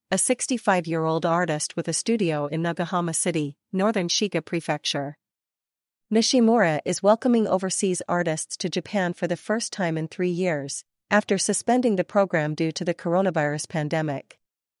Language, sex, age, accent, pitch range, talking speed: English, female, 40-59, American, 160-200 Hz, 140 wpm